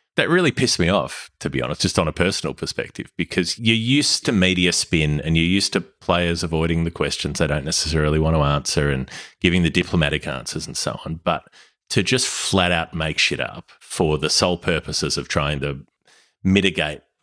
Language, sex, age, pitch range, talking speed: English, male, 30-49, 75-95 Hz, 200 wpm